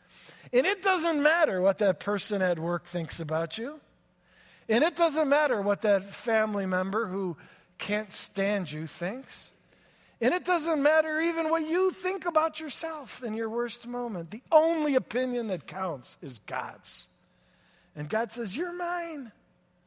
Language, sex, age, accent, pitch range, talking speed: English, male, 40-59, American, 185-245 Hz, 155 wpm